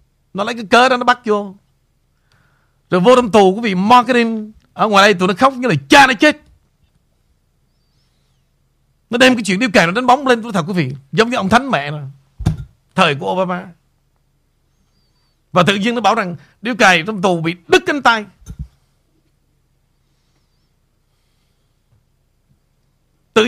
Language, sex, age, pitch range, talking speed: Vietnamese, male, 60-79, 150-245 Hz, 165 wpm